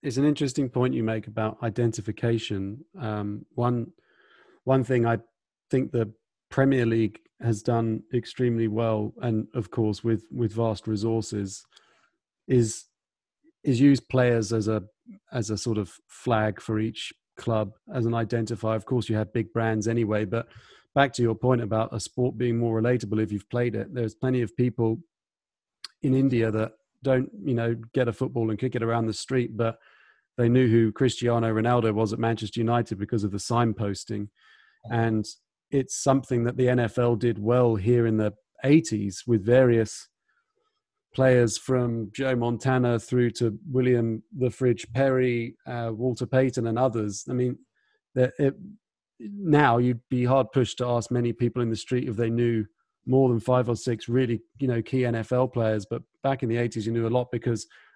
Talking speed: 170 wpm